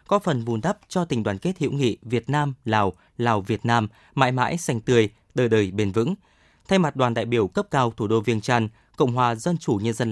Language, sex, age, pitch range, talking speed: Vietnamese, male, 20-39, 115-145 Hz, 245 wpm